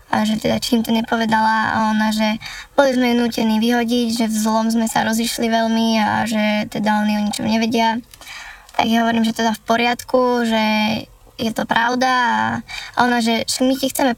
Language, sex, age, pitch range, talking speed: Slovak, male, 10-29, 220-240 Hz, 190 wpm